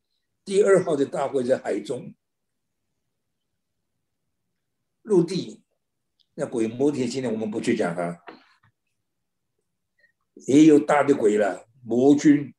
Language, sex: Chinese, male